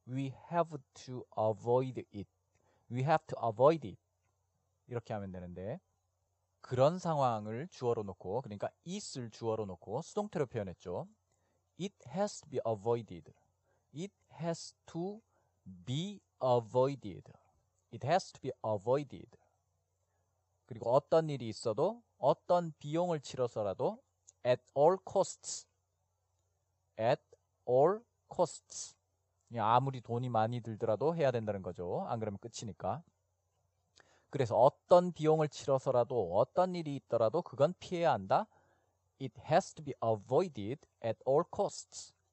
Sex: male